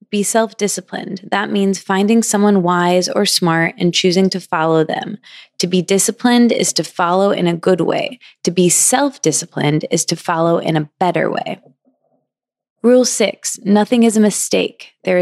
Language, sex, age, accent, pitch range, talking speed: English, female, 20-39, American, 170-225 Hz, 160 wpm